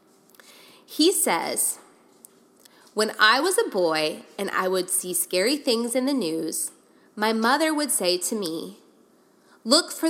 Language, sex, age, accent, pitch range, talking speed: English, female, 20-39, American, 205-275 Hz, 145 wpm